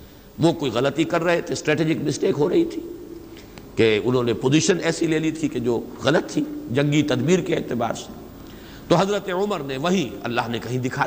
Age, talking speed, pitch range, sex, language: 60-79, 200 wpm, 130-200 Hz, male, Urdu